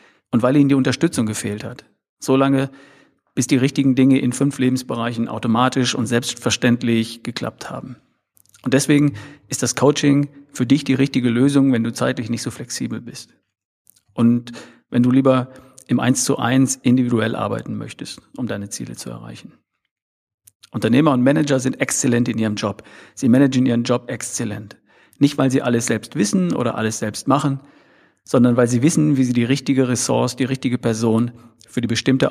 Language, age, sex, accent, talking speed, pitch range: German, 50-69, male, German, 170 wpm, 115-135 Hz